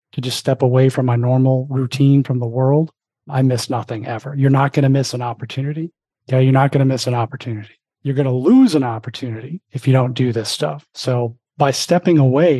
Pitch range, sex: 120-140 Hz, male